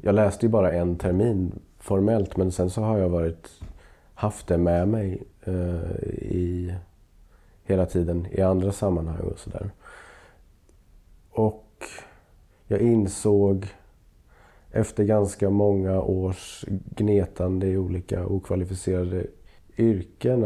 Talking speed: 115 wpm